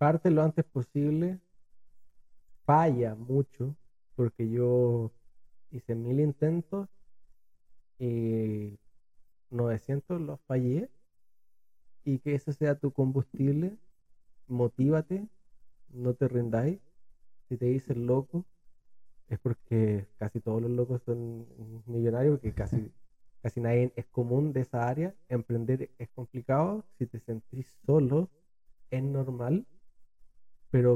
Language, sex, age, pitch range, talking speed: Spanish, male, 30-49, 110-135 Hz, 110 wpm